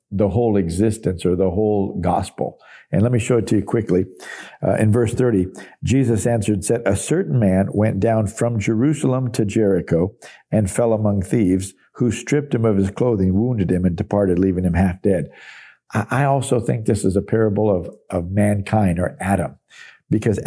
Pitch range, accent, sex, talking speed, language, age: 100-120 Hz, American, male, 185 wpm, English, 50-69